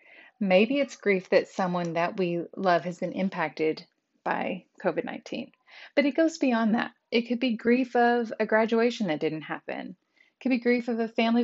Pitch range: 180-240 Hz